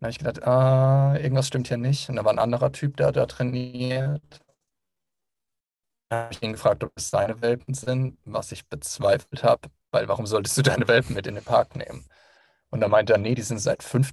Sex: male